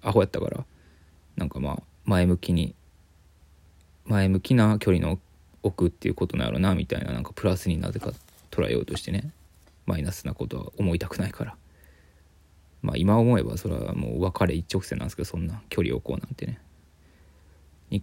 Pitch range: 75-95 Hz